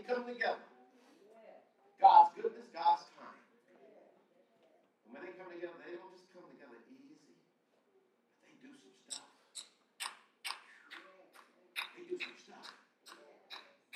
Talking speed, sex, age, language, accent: 105 wpm, male, 50-69, English, American